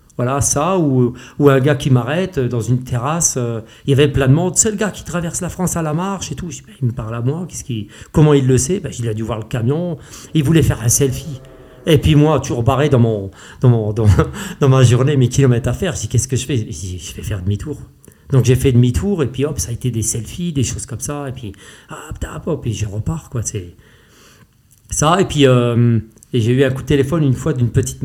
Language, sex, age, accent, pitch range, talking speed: French, male, 40-59, French, 115-145 Hz, 260 wpm